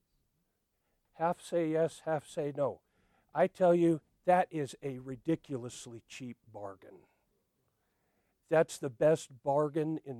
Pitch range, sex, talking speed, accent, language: 130-175 Hz, male, 120 wpm, American, English